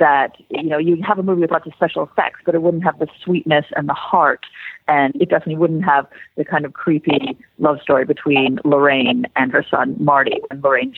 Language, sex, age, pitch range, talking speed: English, female, 30-49, 150-205 Hz, 220 wpm